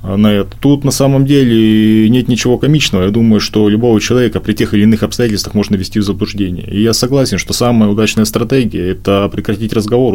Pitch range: 100-120 Hz